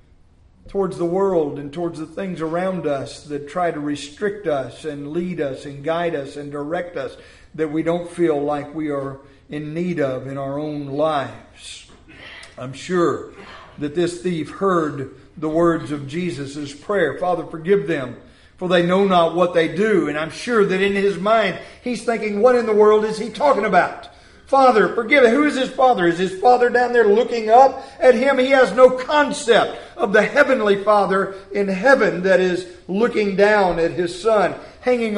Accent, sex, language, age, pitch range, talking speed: American, male, English, 50-69, 145-210 Hz, 185 wpm